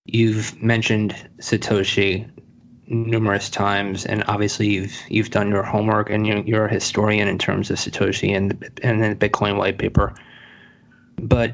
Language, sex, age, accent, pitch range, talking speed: English, male, 20-39, American, 105-115 Hz, 150 wpm